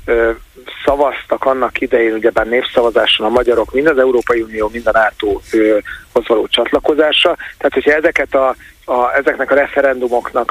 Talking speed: 135 wpm